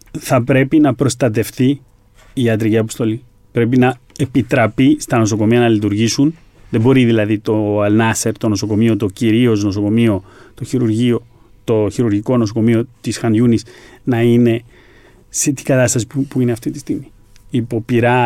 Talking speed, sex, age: 140 wpm, male, 40-59